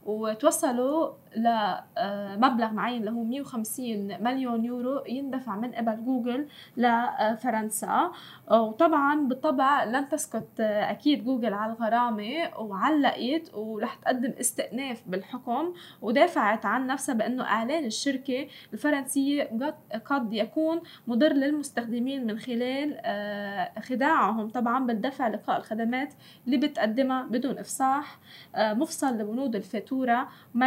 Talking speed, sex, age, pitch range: 100 wpm, female, 10-29, 220-275 Hz